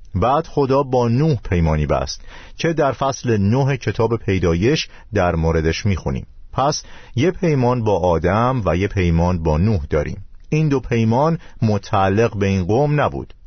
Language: Persian